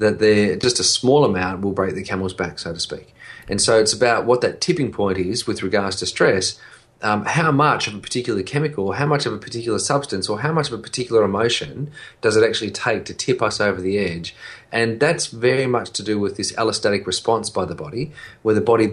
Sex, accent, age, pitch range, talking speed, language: male, Australian, 30-49, 105-130 Hz, 230 wpm, English